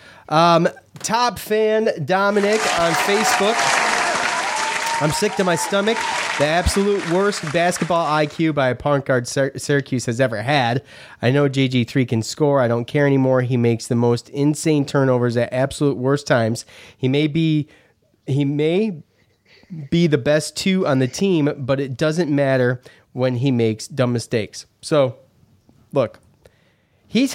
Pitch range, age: 115-160 Hz, 30-49